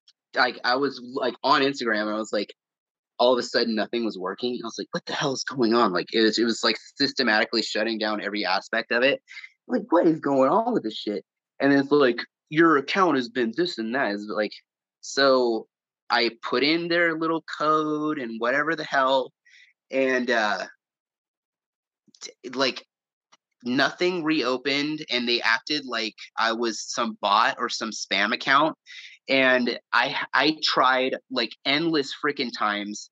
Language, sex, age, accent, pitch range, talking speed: English, male, 30-49, American, 115-160 Hz, 175 wpm